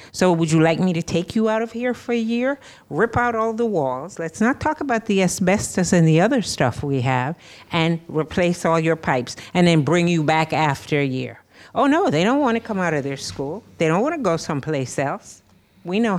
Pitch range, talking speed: 140-185 Hz, 230 wpm